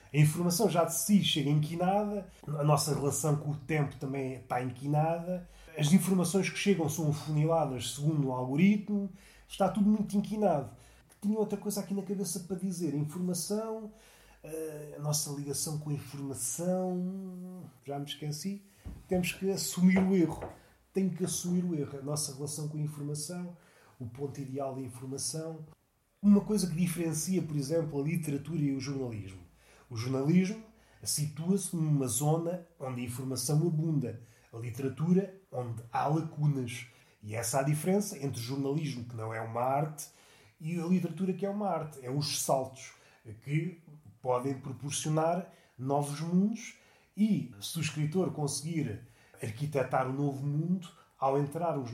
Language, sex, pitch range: Portuguese, male, 140-180 Hz